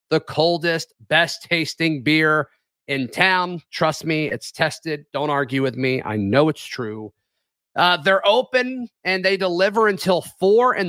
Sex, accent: male, American